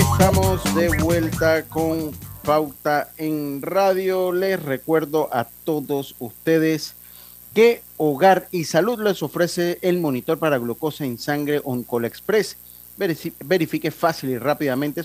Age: 40-59